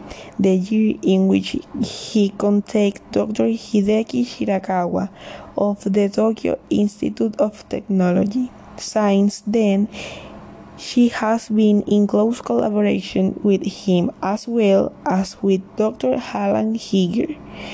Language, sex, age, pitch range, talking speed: English, female, 20-39, 195-215 Hz, 110 wpm